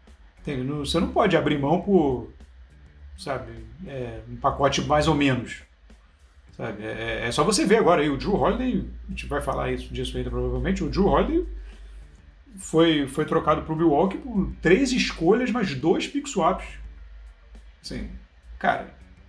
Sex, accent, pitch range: male, Brazilian, 115-185 Hz